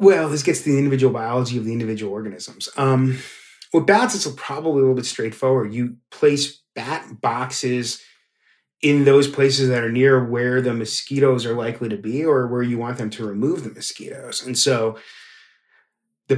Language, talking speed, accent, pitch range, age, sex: English, 180 wpm, American, 115-140 Hz, 30-49, male